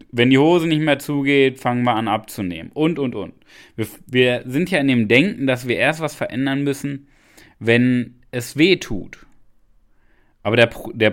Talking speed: 180 wpm